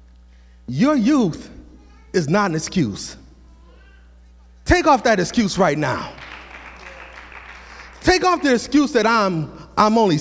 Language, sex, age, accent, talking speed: English, male, 30-49, American, 120 wpm